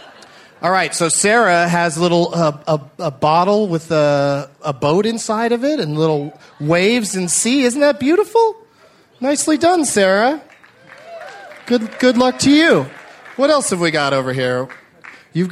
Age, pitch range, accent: 30-49, 145-195 Hz, American